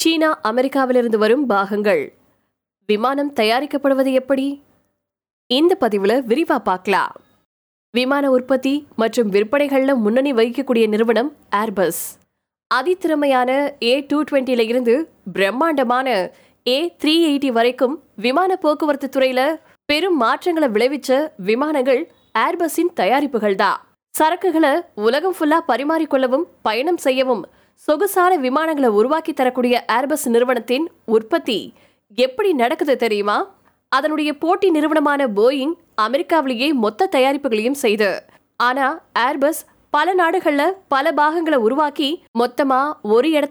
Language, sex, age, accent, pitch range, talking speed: Tamil, female, 20-39, native, 240-310 Hz, 40 wpm